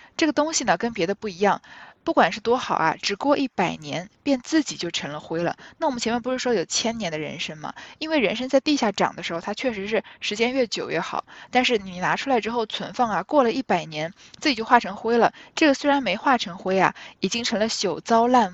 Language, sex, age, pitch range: Chinese, female, 10-29, 185-245 Hz